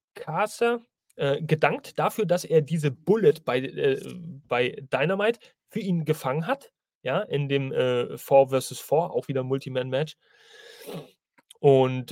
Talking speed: 130 wpm